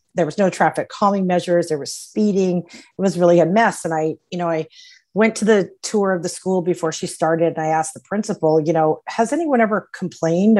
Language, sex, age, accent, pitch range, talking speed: English, female, 30-49, American, 165-210 Hz, 225 wpm